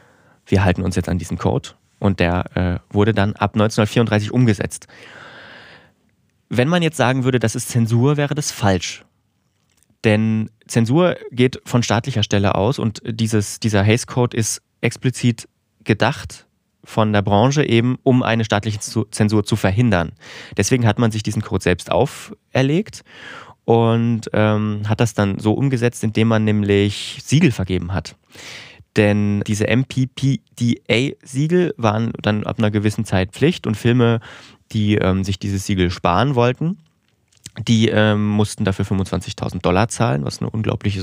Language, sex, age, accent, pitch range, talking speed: German, male, 30-49, German, 105-120 Hz, 150 wpm